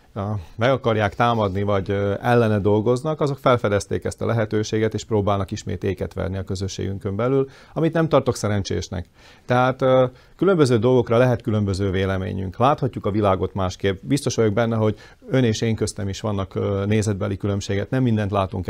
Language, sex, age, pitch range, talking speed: Hungarian, male, 40-59, 100-125 Hz, 155 wpm